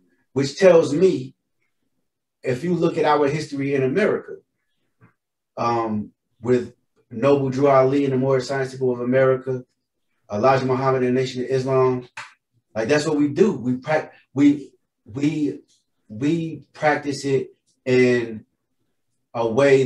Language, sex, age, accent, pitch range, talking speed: English, male, 30-49, American, 125-150 Hz, 135 wpm